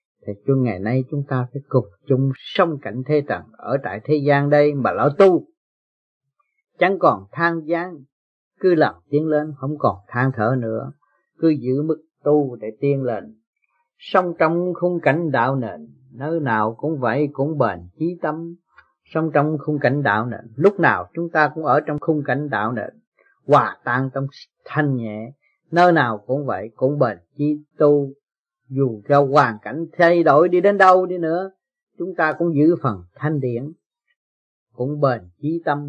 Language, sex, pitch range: Vietnamese, male, 130-180 Hz